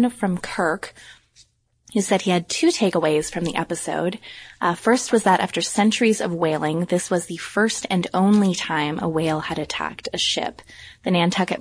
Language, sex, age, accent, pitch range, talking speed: English, female, 20-39, American, 165-205 Hz, 175 wpm